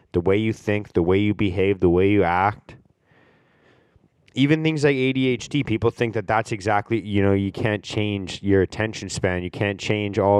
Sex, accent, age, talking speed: male, American, 20-39, 190 wpm